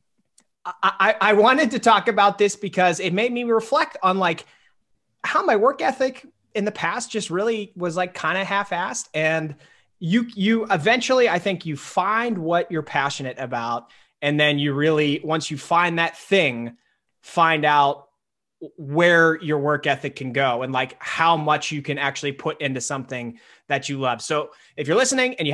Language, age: English, 30-49